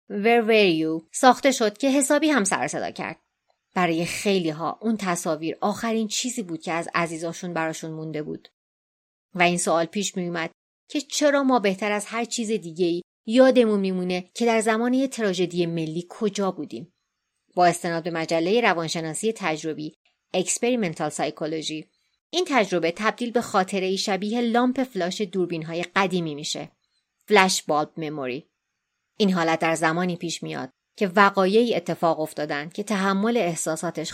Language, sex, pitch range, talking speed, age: Persian, female, 160-215 Hz, 140 wpm, 30-49